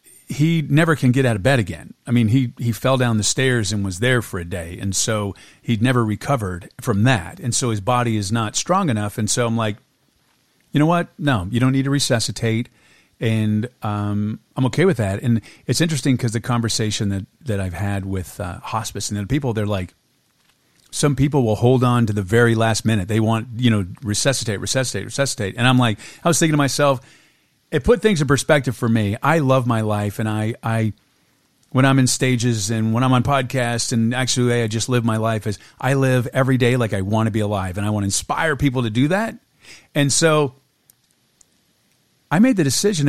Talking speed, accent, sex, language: 215 wpm, American, male, English